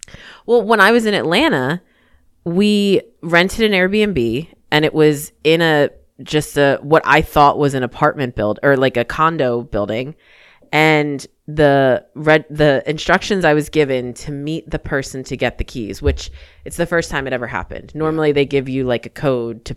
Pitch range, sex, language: 120-150 Hz, female, English